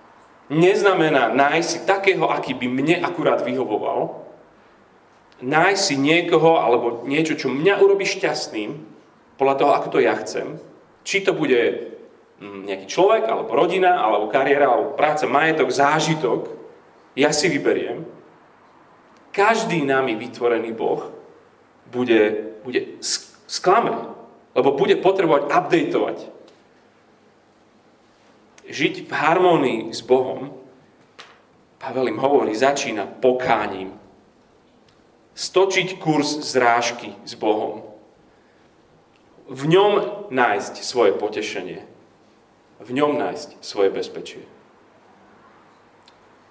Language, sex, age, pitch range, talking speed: Slovak, male, 30-49, 125-205 Hz, 100 wpm